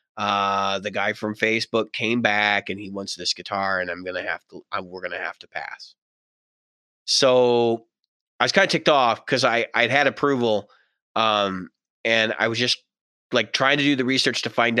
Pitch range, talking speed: 115-165 Hz, 205 wpm